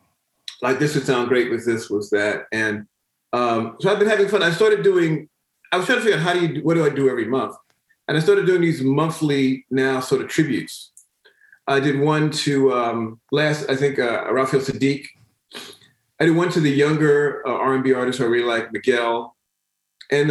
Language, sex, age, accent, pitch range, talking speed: English, male, 40-59, American, 125-155 Hz, 205 wpm